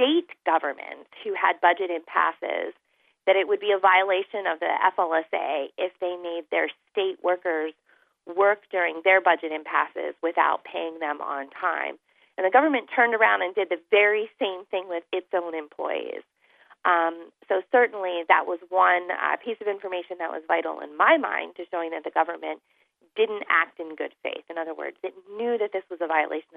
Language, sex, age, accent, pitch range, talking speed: English, female, 30-49, American, 160-205 Hz, 185 wpm